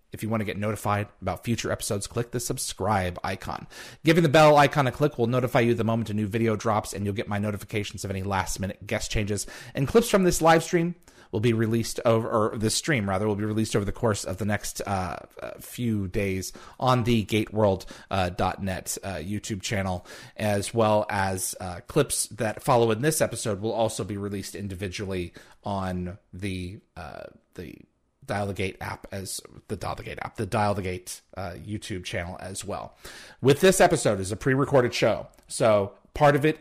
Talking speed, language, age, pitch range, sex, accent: 195 wpm, English, 30-49, 100-125 Hz, male, American